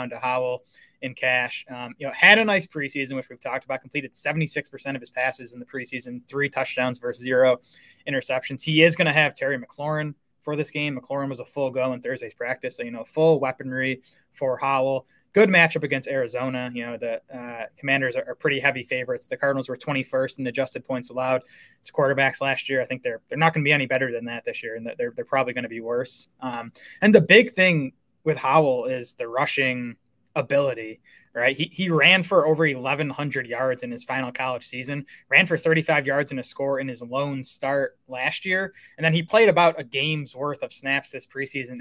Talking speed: 215 wpm